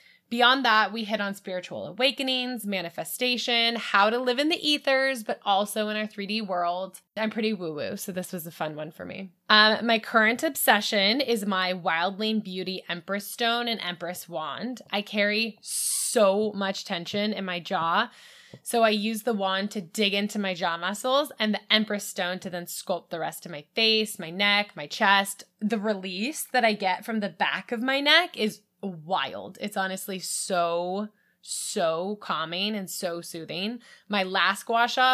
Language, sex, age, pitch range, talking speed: English, female, 10-29, 185-225 Hz, 180 wpm